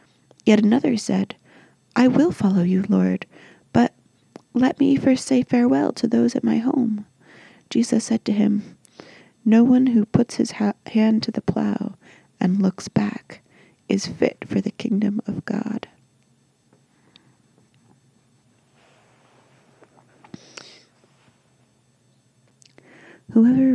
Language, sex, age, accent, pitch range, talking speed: English, female, 30-49, American, 190-235 Hz, 110 wpm